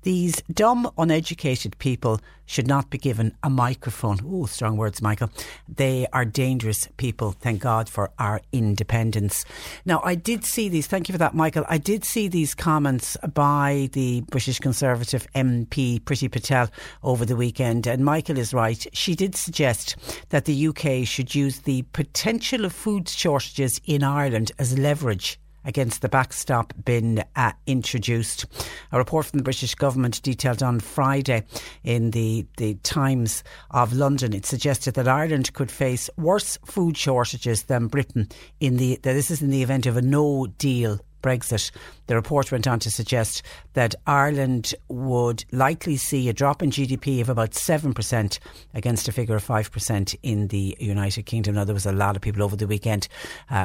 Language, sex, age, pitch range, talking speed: English, female, 60-79, 110-140 Hz, 170 wpm